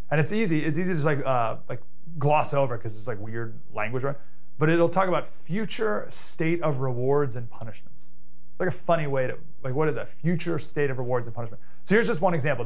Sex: male